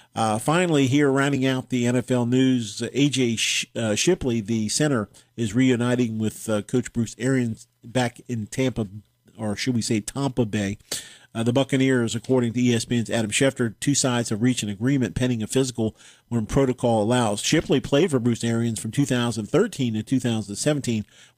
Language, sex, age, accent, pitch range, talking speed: English, male, 50-69, American, 115-135 Hz, 165 wpm